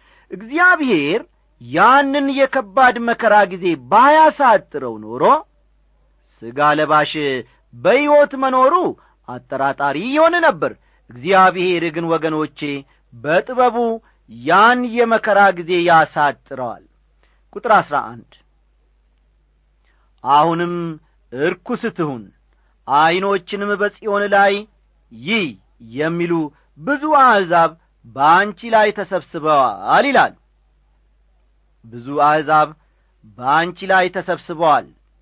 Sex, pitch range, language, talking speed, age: male, 135-210 Hz, Amharic, 75 wpm, 50-69